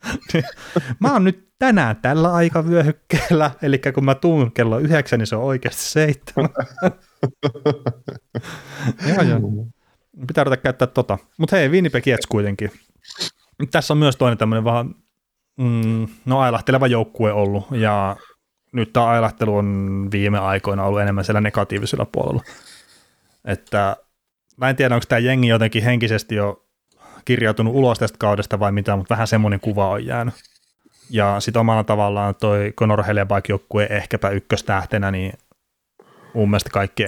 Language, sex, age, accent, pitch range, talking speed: Finnish, male, 30-49, native, 105-130 Hz, 135 wpm